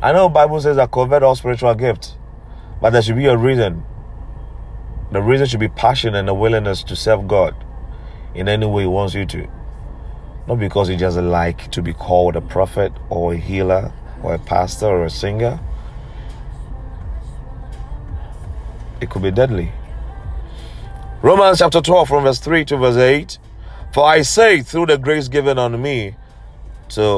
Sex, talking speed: male, 165 wpm